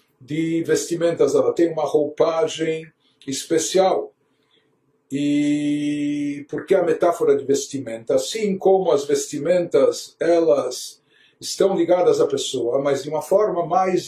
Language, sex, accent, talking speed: Portuguese, male, Brazilian, 120 wpm